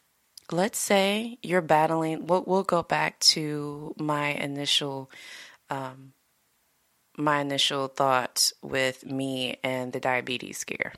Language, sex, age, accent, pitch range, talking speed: English, female, 20-39, American, 135-170 Hz, 115 wpm